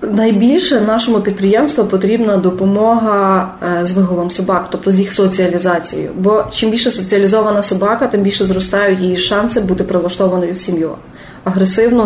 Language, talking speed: Ukrainian, 135 wpm